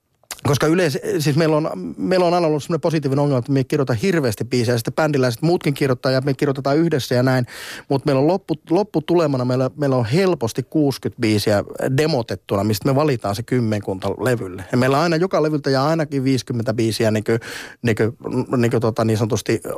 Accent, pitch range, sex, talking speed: native, 115-155 Hz, male, 185 wpm